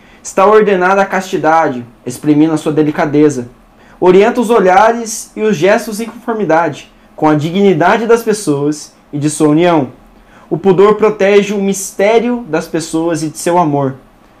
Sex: male